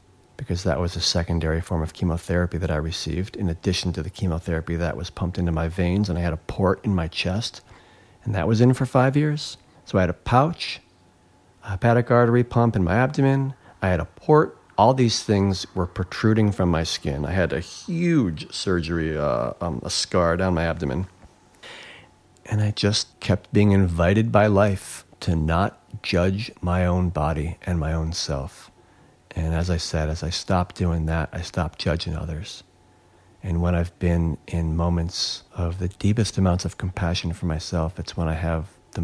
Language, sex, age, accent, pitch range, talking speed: English, male, 40-59, American, 85-100 Hz, 190 wpm